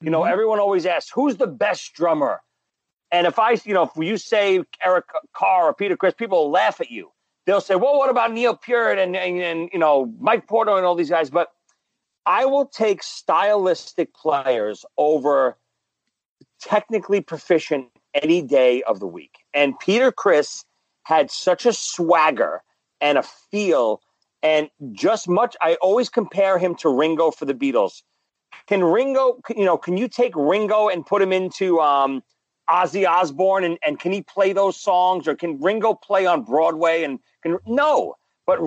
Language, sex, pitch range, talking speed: English, male, 155-210 Hz, 175 wpm